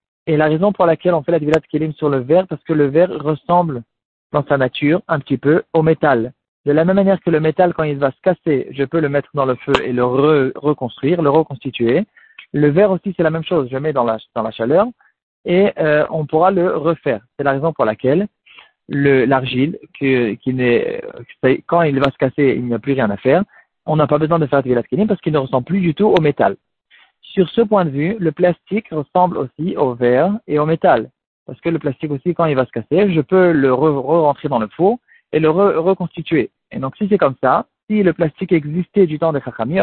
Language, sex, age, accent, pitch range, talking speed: French, male, 40-59, French, 140-180 Hz, 240 wpm